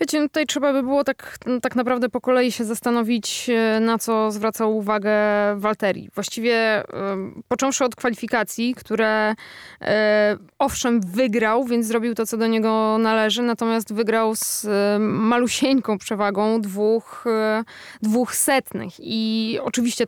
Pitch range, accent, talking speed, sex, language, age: 210-240 Hz, native, 125 wpm, female, Polish, 20-39